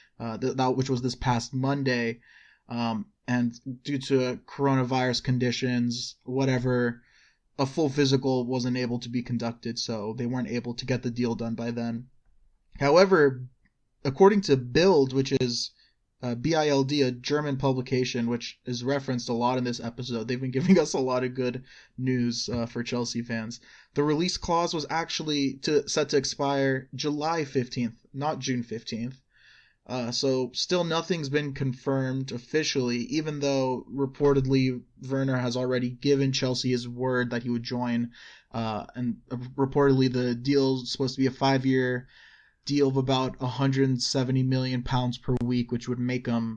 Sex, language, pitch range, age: male, English, 120-135 Hz, 20-39